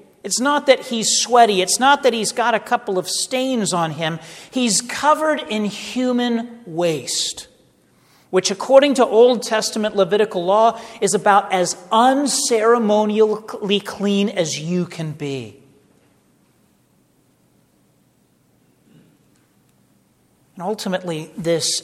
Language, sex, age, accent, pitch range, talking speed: English, male, 40-59, American, 165-225 Hz, 110 wpm